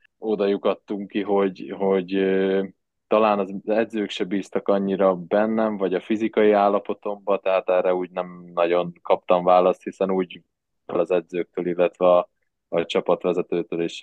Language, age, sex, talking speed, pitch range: Hungarian, 20-39, male, 135 wpm, 85-95 Hz